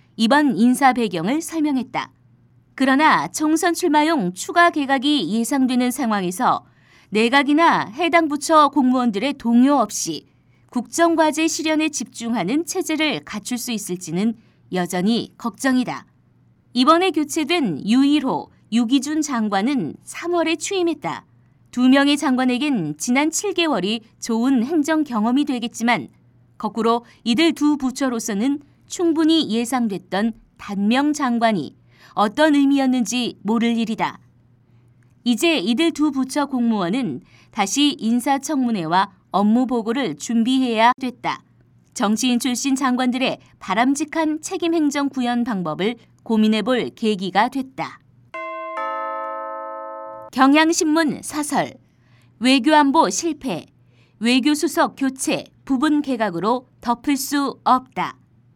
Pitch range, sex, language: 220-295 Hz, female, Korean